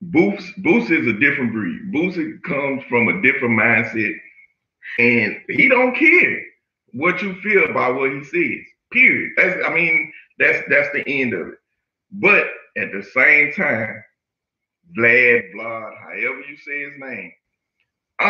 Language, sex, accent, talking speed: English, male, American, 150 wpm